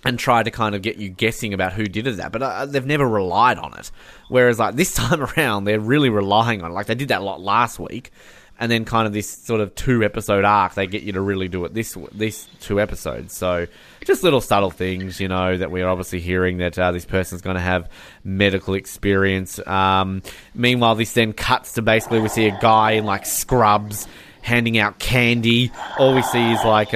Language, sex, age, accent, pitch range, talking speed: English, male, 20-39, Australian, 95-115 Hz, 225 wpm